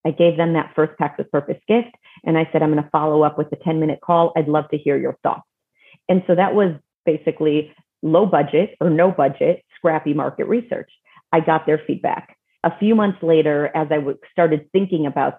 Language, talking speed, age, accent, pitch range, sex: English, 200 wpm, 40-59, American, 155-175 Hz, female